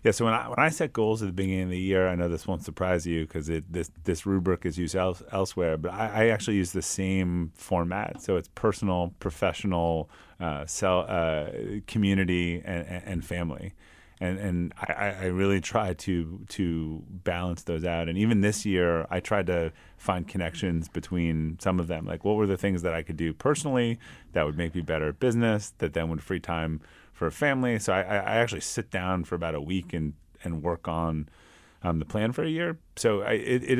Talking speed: 215 wpm